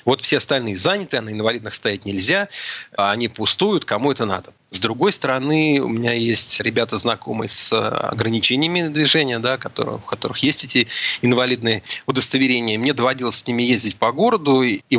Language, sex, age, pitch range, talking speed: Russian, male, 30-49, 110-130 Hz, 160 wpm